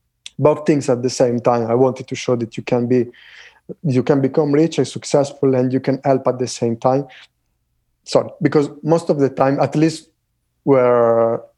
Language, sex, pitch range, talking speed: English, male, 125-145 Hz, 190 wpm